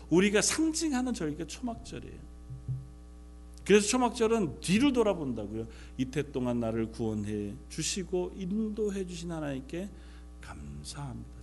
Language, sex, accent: Korean, male, native